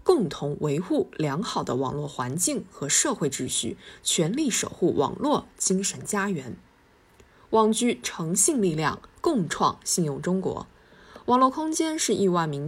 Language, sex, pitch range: Chinese, female, 155-245 Hz